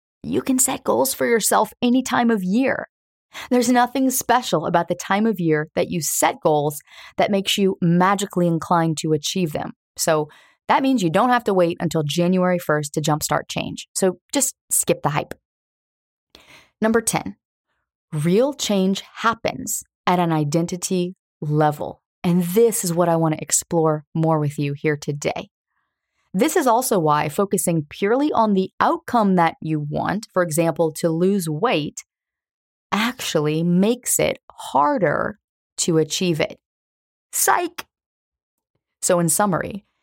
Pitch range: 160-215 Hz